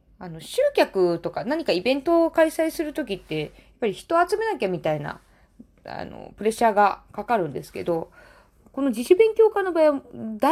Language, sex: Japanese, female